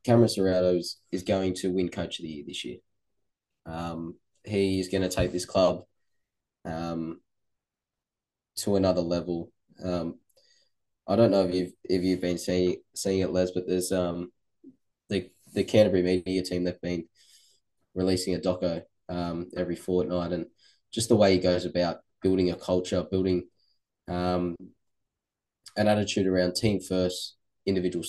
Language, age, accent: English, 10-29, Australian